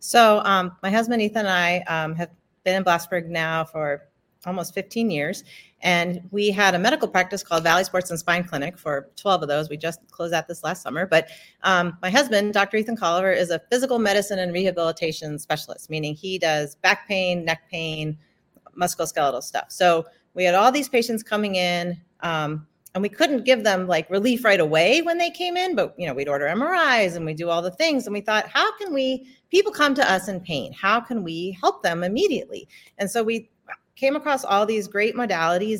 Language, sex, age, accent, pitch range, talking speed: English, female, 40-59, American, 170-235 Hz, 205 wpm